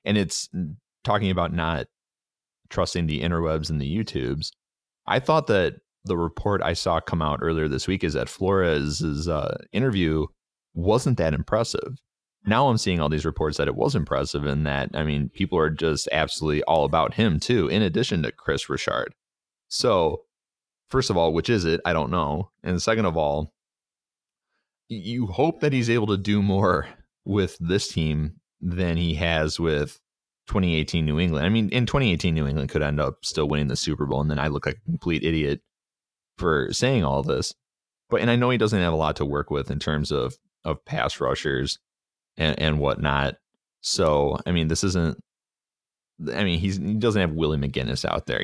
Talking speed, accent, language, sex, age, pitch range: 185 wpm, American, English, male, 30-49, 75-95 Hz